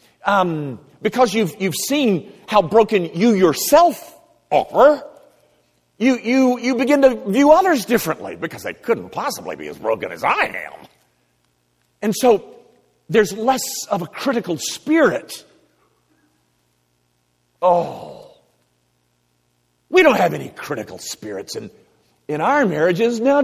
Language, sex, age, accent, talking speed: English, male, 50-69, American, 125 wpm